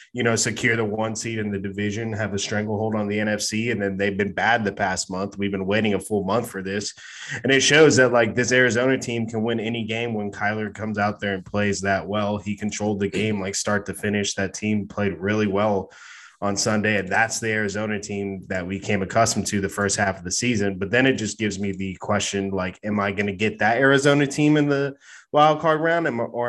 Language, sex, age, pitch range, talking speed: English, male, 20-39, 100-115 Hz, 240 wpm